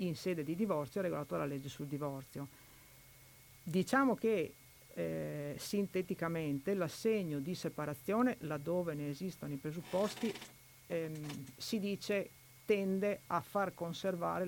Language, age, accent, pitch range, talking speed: Italian, 50-69, native, 145-185 Hz, 120 wpm